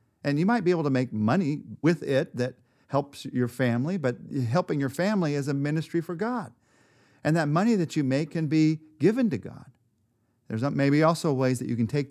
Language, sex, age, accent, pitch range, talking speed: English, male, 40-59, American, 110-145 Hz, 210 wpm